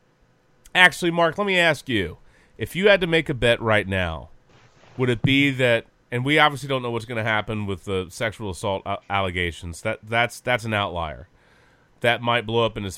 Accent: American